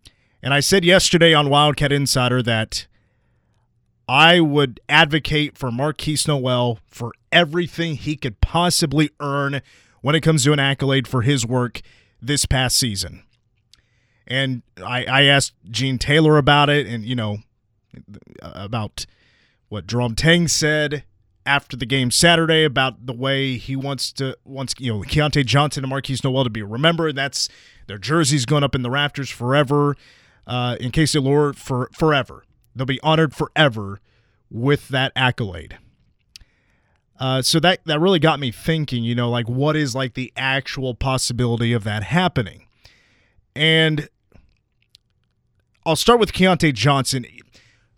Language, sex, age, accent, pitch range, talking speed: English, male, 30-49, American, 120-150 Hz, 145 wpm